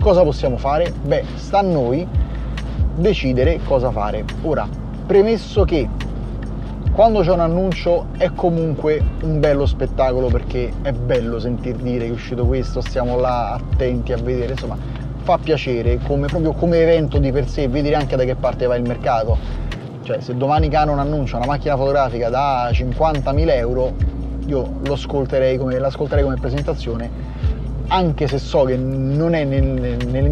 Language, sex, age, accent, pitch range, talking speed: Italian, male, 30-49, native, 125-150 Hz, 160 wpm